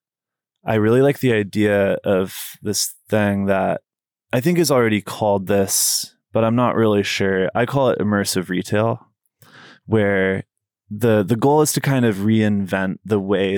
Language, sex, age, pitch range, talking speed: English, male, 20-39, 100-125 Hz, 160 wpm